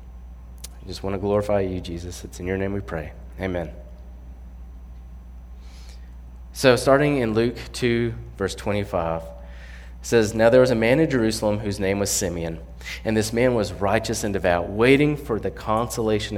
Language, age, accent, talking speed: English, 30-49, American, 160 wpm